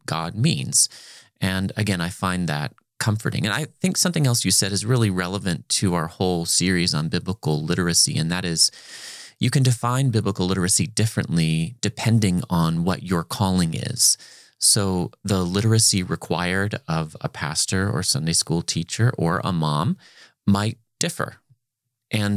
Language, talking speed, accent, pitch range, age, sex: English, 155 wpm, American, 90-125 Hz, 30-49, male